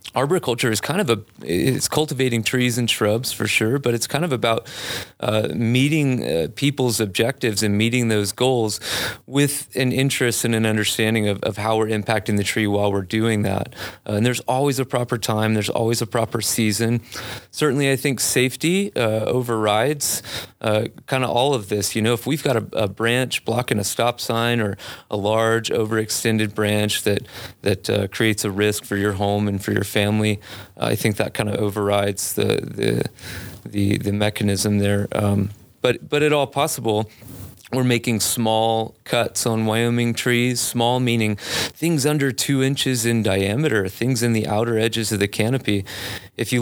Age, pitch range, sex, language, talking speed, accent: 30-49, 105-125 Hz, male, English, 180 wpm, American